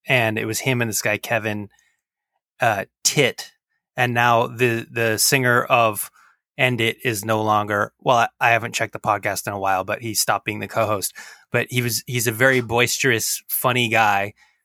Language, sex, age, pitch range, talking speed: English, male, 20-39, 115-135 Hz, 190 wpm